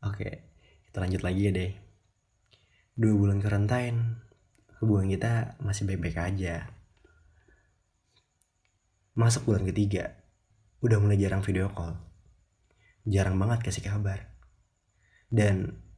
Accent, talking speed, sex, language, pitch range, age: native, 100 wpm, male, Indonesian, 95-110 Hz, 20-39